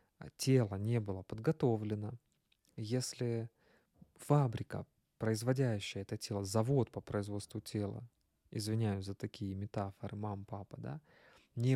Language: Russian